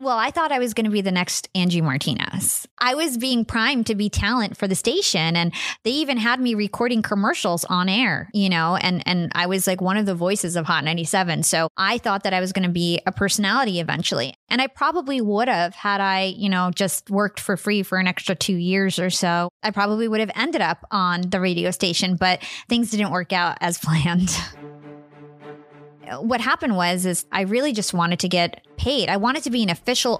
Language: English